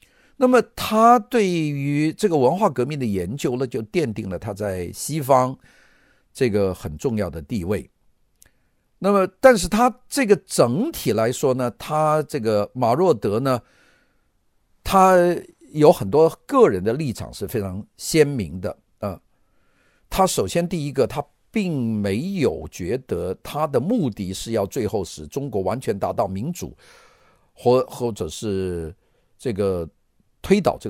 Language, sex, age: Chinese, male, 50-69